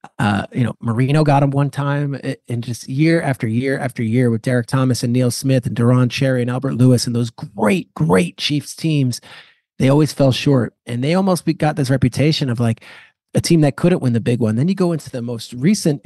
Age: 30-49